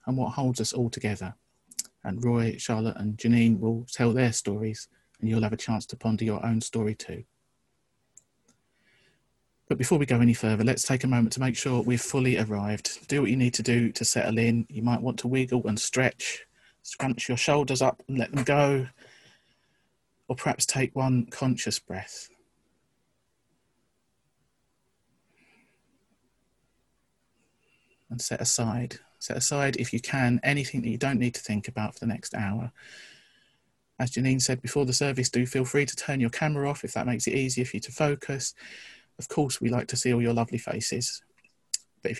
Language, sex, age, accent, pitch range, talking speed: English, male, 40-59, British, 115-130 Hz, 180 wpm